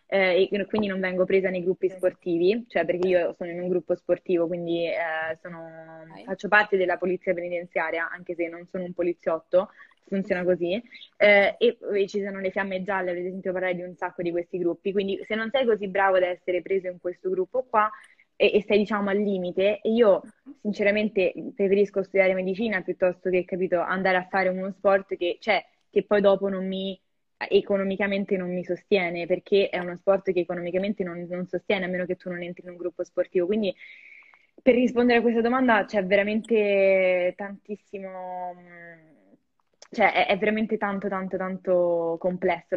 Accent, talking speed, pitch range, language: native, 180 wpm, 180-205 Hz, Italian